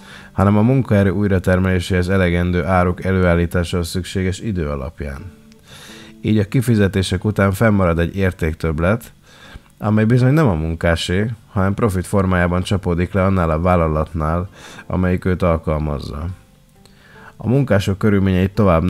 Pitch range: 85-100 Hz